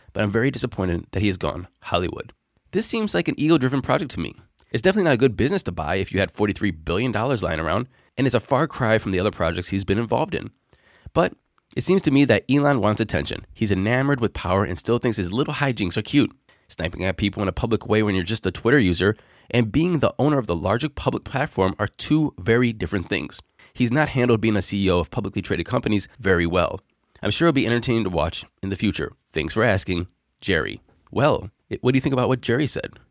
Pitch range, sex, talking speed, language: 95-130 Hz, male, 230 wpm, English